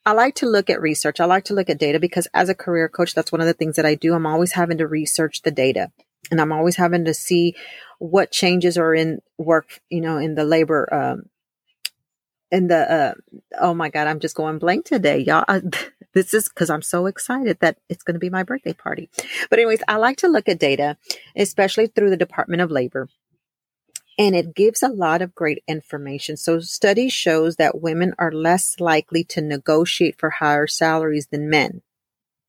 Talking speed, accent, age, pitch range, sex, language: 210 wpm, American, 40-59, 160-190 Hz, female, English